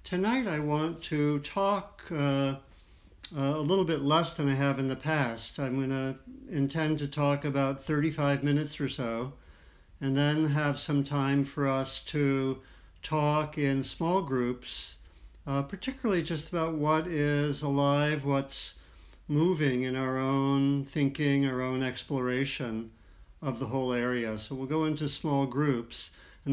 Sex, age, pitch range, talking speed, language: male, 60-79, 125-145 Hz, 150 wpm, English